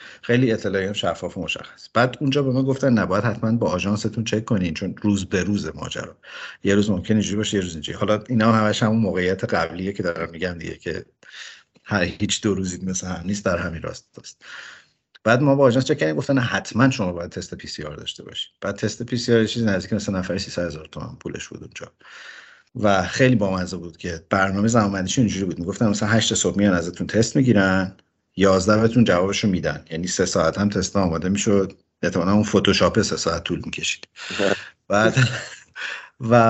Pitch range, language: 95-115 Hz, Persian